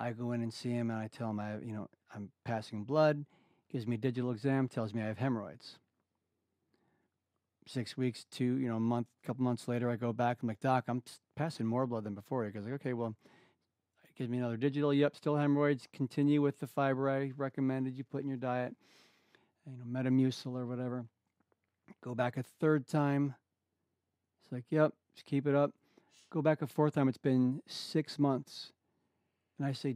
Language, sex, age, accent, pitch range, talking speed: English, male, 40-59, American, 115-140 Hz, 205 wpm